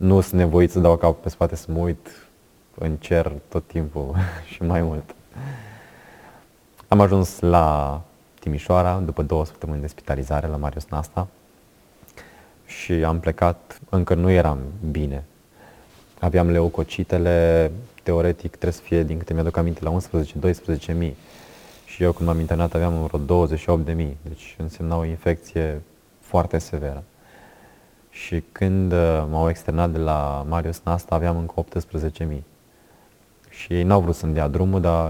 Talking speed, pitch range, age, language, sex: 140 wpm, 80-90 Hz, 20-39, Romanian, male